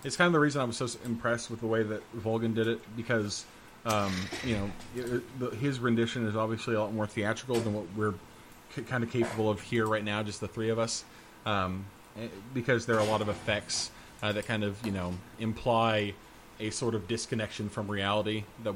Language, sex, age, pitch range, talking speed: English, male, 30-49, 105-120 Hz, 210 wpm